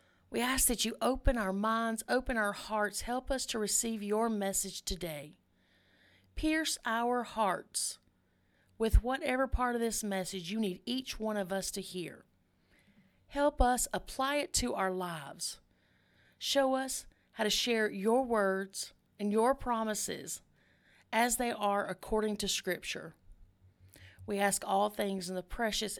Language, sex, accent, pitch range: English, female, American, 180-250 Hz